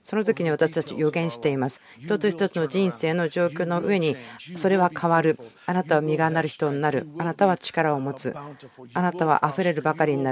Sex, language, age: female, Japanese, 40-59